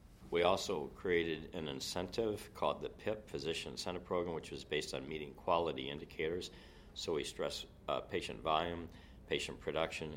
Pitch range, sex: 75-95 Hz, male